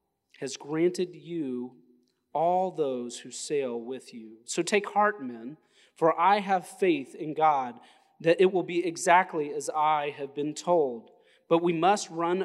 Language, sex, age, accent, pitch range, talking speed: English, male, 30-49, American, 150-185 Hz, 160 wpm